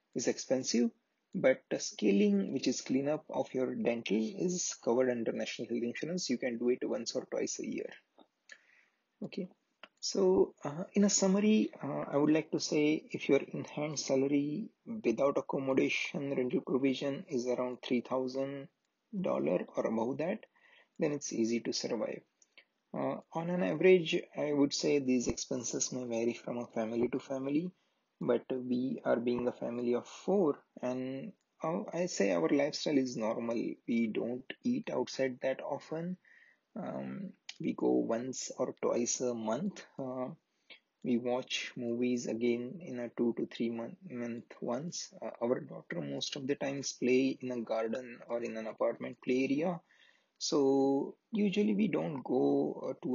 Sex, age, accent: male, 30-49, Indian